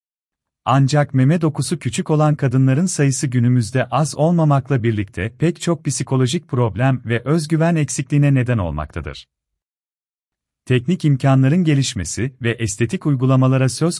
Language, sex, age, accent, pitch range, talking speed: Turkish, male, 40-59, native, 105-150 Hz, 115 wpm